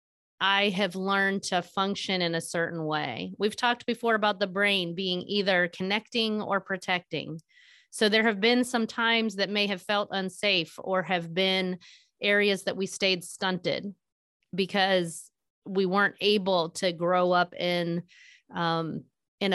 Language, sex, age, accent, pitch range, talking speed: English, female, 30-49, American, 175-220 Hz, 145 wpm